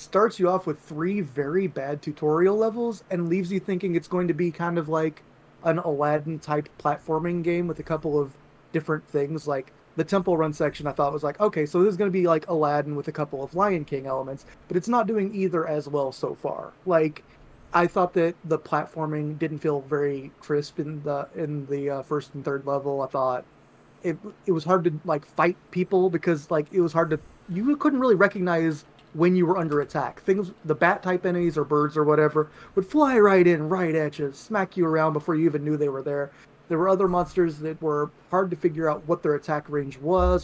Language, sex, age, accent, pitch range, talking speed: English, male, 30-49, American, 150-185 Hz, 225 wpm